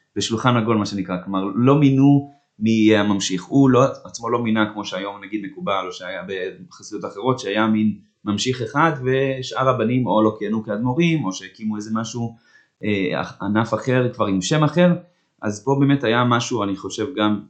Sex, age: male, 20-39